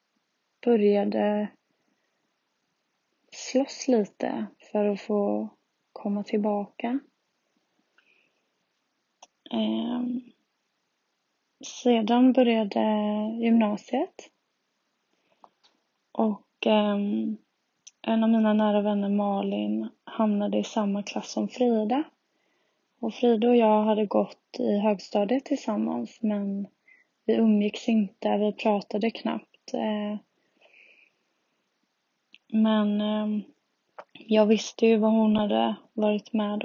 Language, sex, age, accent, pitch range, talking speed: Swedish, female, 20-39, native, 205-230 Hz, 80 wpm